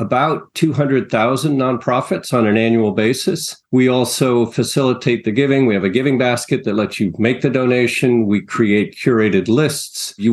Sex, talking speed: male, 170 wpm